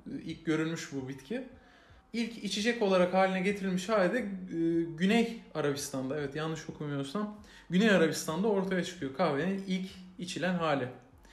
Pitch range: 155-195 Hz